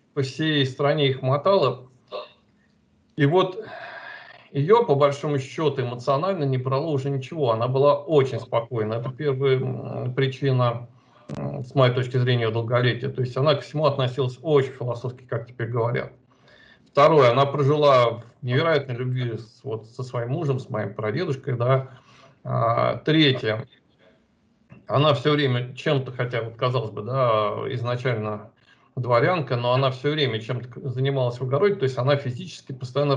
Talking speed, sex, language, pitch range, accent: 140 wpm, male, Russian, 125-145 Hz, native